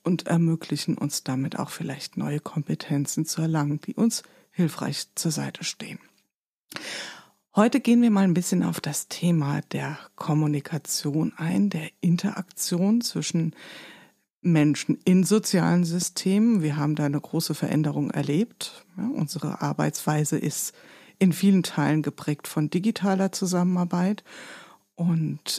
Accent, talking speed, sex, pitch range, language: German, 125 wpm, female, 150-190 Hz, German